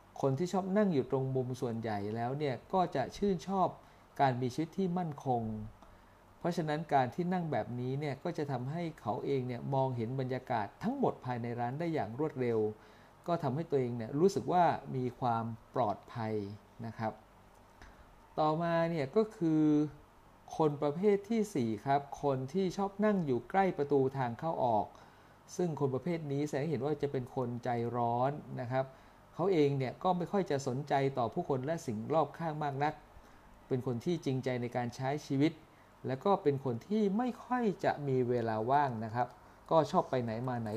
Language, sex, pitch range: Thai, male, 120-160 Hz